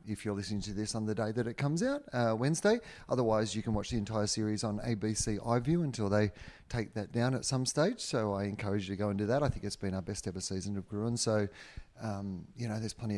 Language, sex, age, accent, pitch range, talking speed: English, male, 30-49, Australian, 100-120 Hz, 260 wpm